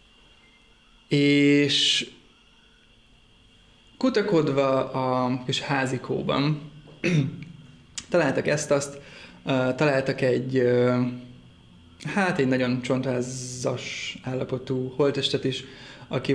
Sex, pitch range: male, 125-145 Hz